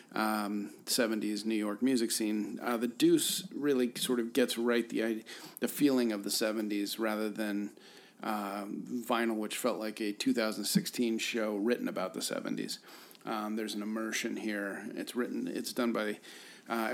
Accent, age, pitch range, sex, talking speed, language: American, 40-59, 110-125 Hz, male, 165 wpm, English